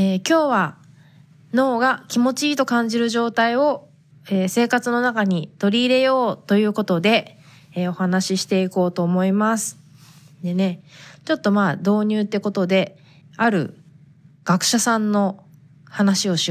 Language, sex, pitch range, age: Japanese, female, 155-210 Hz, 20-39